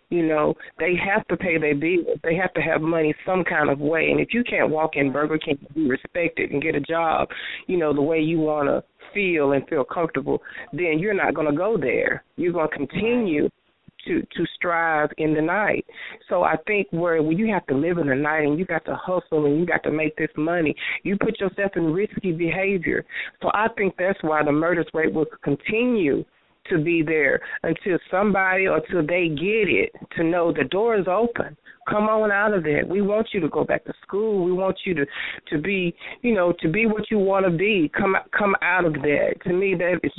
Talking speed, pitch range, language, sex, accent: 225 wpm, 155-195 Hz, English, female, American